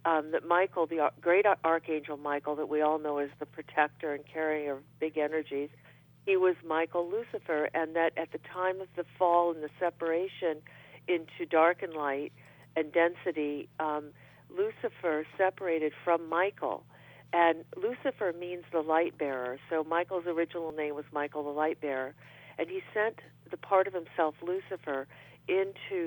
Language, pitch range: English, 145-175 Hz